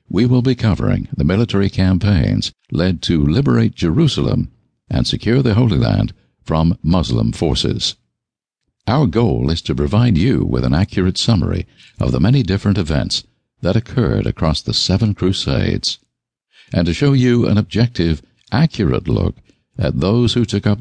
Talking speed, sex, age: 155 wpm, male, 60-79